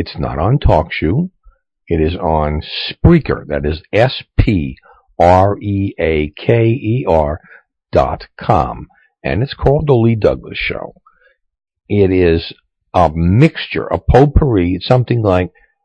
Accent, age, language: American, 60-79, English